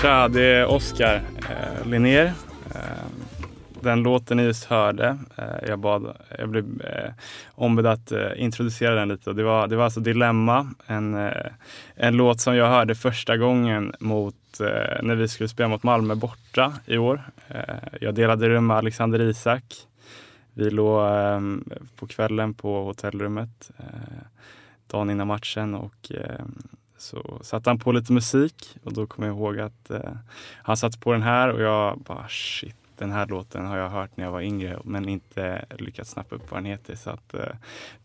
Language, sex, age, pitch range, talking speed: English, male, 10-29, 105-120 Hz, 180 wpm